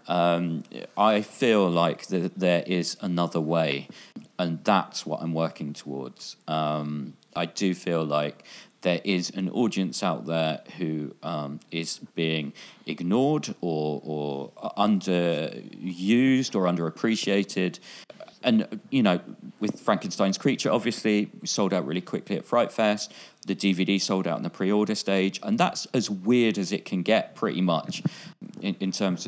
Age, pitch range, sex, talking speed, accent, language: 40-59, 80-100 Hz, male, 145 wpm, British, English